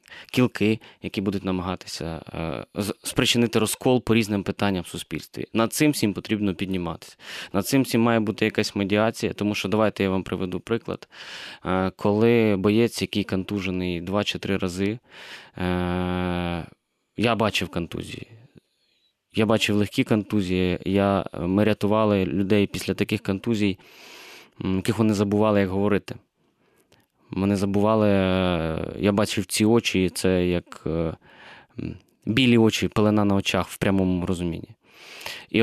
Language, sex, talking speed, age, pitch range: Ukrainian, male, 125 wpm, 20-39, 95-115 Hz